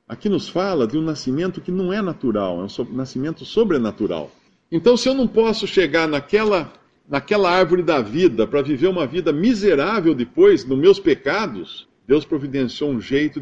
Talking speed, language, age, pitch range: 170 wpm, Portuguese, 50-69, 115-170 Hz